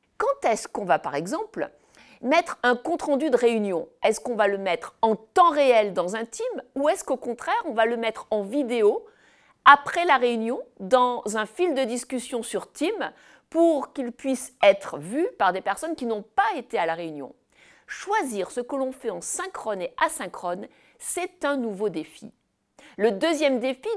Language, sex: French, female